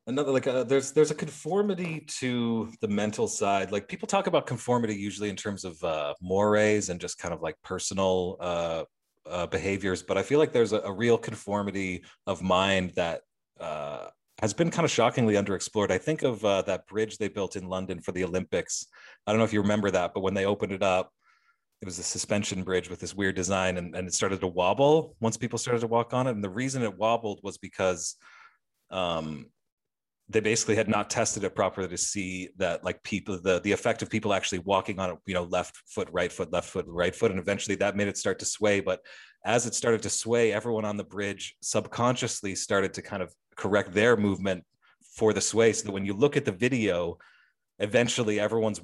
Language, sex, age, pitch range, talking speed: English, male, 30-49, 95-115 Hz, 215 wpm